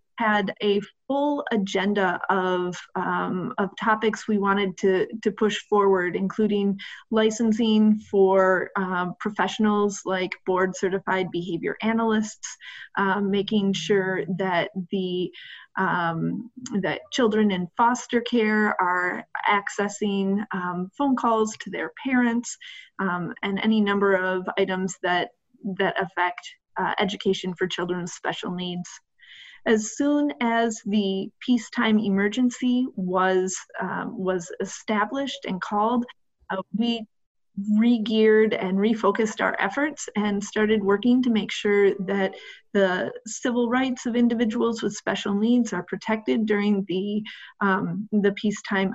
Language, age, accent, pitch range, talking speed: English, 30-49, American, 195-235 Hz, 120 wpm